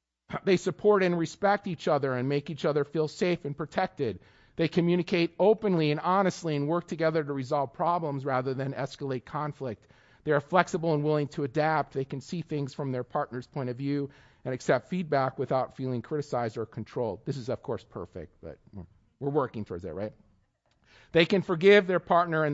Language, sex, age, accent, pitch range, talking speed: English, male, 40-59, American, 125-165 Hz, 190 wpm